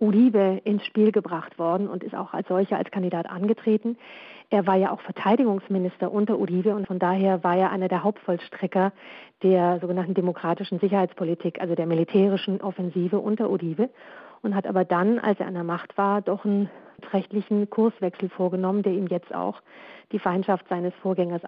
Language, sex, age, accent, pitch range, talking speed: German, female, 40-59, German, 185-210 Hz, 170 wpm